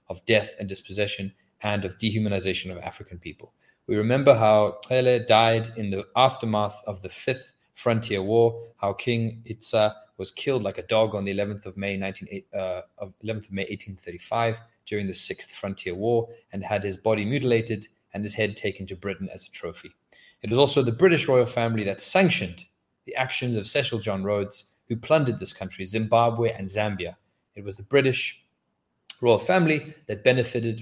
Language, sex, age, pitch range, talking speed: English, male, 30-49, 100-115 Hz, 170 wpm